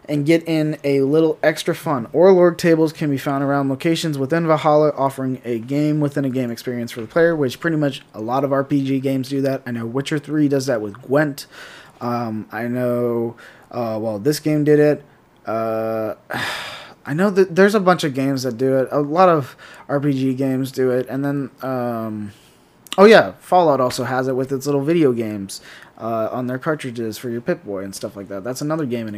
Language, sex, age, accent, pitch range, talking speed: English, male, 20-39, American, 120-145 Hz, 210 wpm